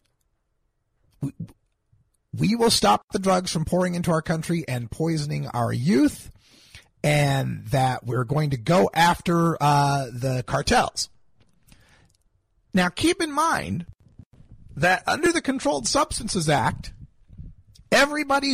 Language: English